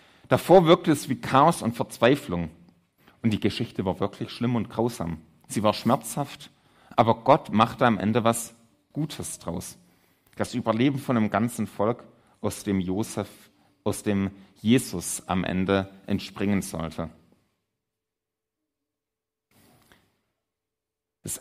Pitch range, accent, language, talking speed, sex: 105-140 Hz, German, German, 120 wpm, male